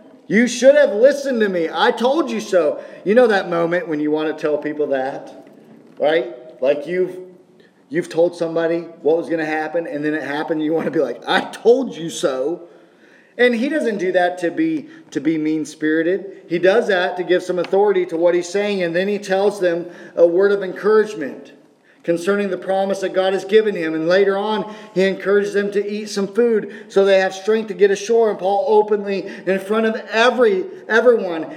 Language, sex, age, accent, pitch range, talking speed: English, male, 40-59, American, 185-240 Hz, 205 wpm